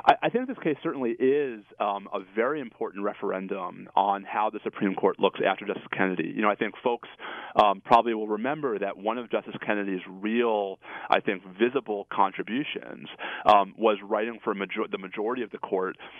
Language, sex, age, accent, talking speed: English, male, 30-49, American, 185 wpm